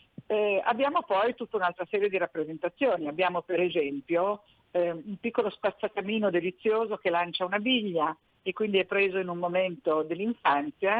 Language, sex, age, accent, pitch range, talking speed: Italian, female, 50-69, native, 170-215 Hz, 155 wpm